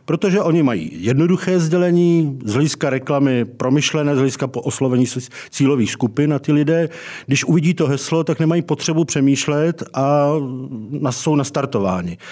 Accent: native